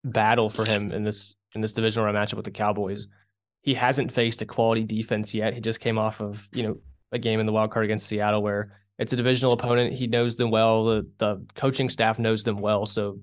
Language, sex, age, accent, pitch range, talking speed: English, male, 20-39, American, 105-120 Hz, 230 wpm